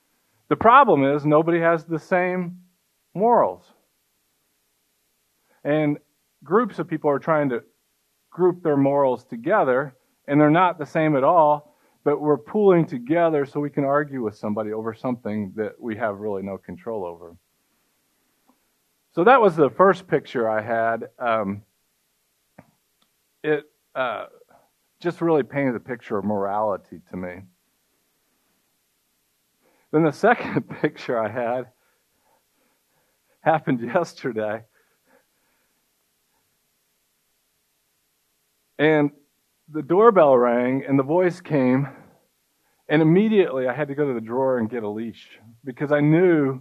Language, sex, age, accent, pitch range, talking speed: English, male, 50-69, American, 120-165 Hz, 125 wpm